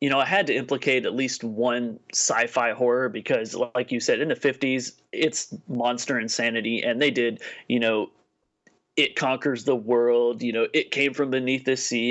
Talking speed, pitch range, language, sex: 190 wpm, 120-150 Hz, English, male